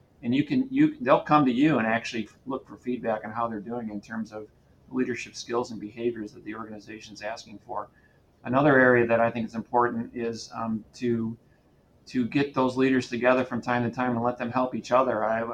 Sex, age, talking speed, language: male, 40-59, 215 wpm, English